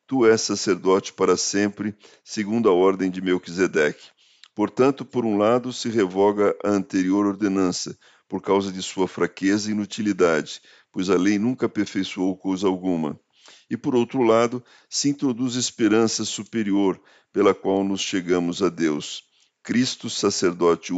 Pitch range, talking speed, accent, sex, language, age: 95-115 Hz, 140 wpm, Brazilian, male, Portuguese, 50-69